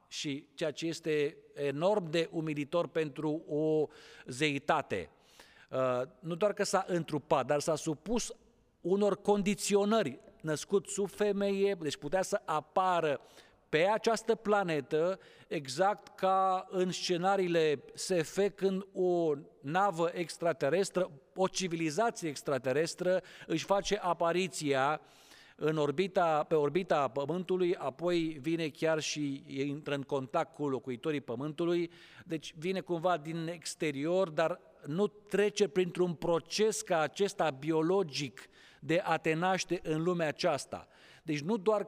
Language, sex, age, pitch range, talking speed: Romanian, male, 50-69, 155-190 Hz, 115 wpm